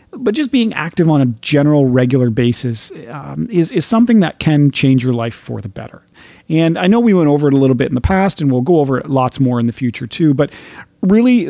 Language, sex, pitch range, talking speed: English, male, 125-175 Hz, 245 wpm